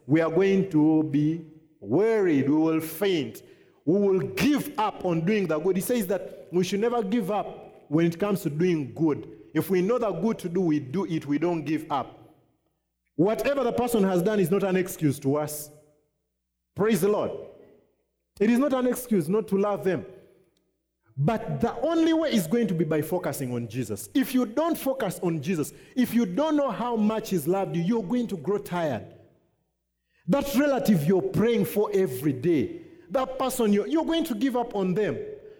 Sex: male